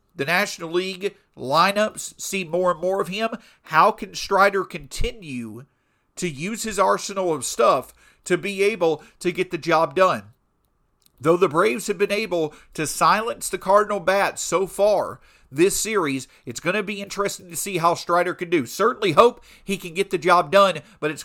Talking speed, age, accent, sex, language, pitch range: 180 wpm, 40-59, American, male, English, 160-205 Hz